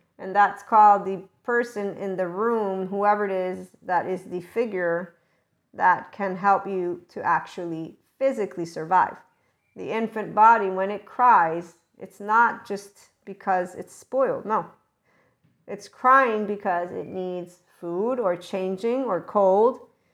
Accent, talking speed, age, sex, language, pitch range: American, 135 wpm, 50-69, female, English, 185-210 Hz